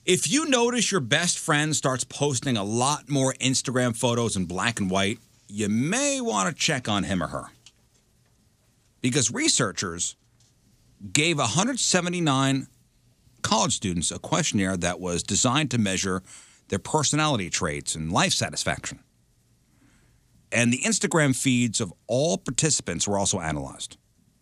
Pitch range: 105-150 Hz